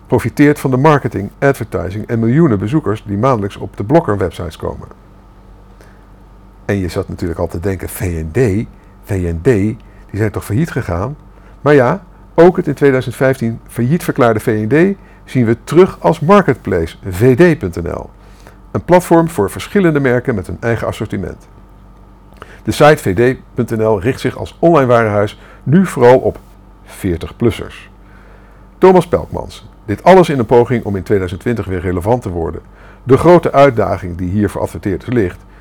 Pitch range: 100-135 Hz